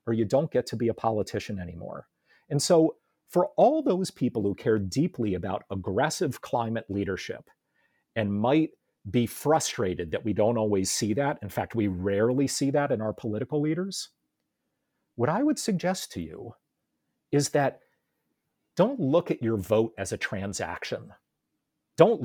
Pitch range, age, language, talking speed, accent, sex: 110-165 Hz, 40-59, English, 160 wpm, American, male